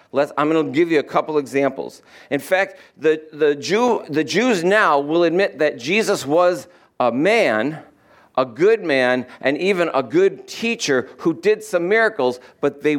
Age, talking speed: 50-69, 160 wpm